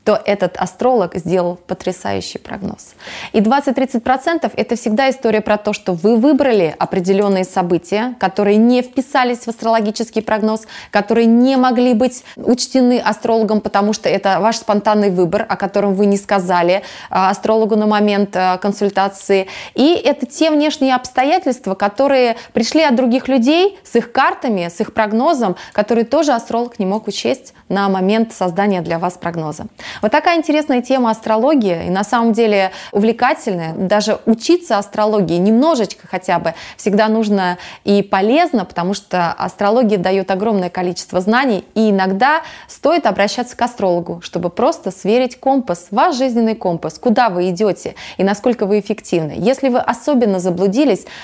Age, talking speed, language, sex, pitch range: 20-39, 145 wpm, Russian, female, 195-245 Hz